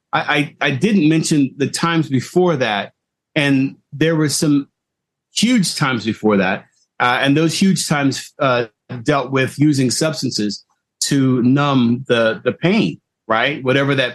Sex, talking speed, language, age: male, 145 wpm, English, 40-59